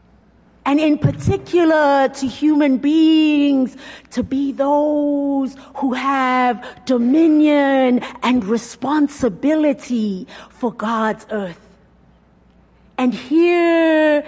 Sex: female